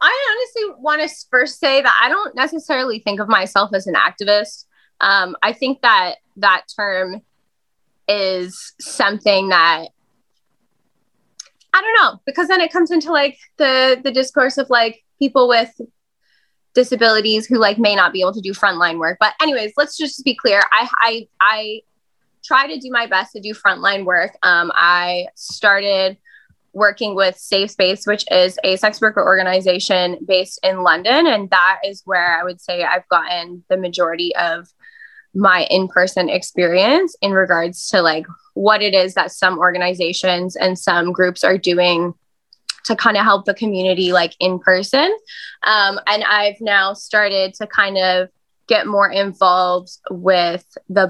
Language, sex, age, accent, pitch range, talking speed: English, female, 10-29, American, 185-235 Hz, 160 wpm